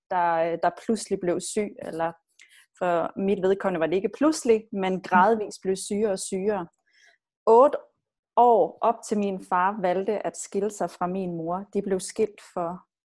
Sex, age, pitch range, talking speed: female, 30-49, 180-220 Hz, 165 wpm